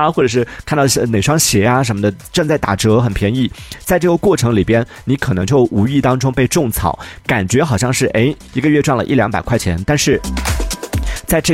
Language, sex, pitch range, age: Chinese, male, 100-135 Hz, 30-49